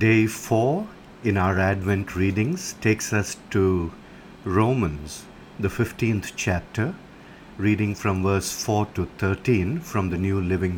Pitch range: 95-130 Hz